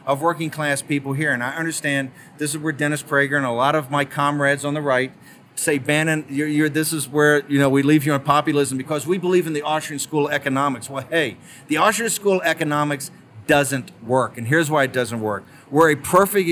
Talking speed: 230 wpm